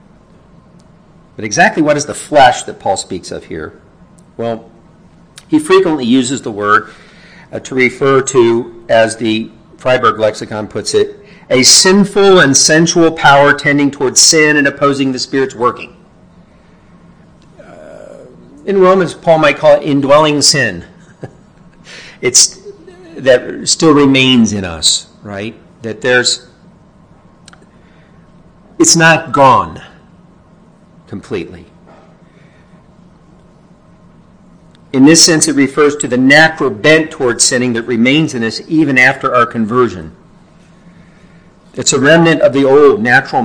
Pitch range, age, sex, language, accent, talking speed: 125-165 Hz, 50-69, male, English, American, 120 wpm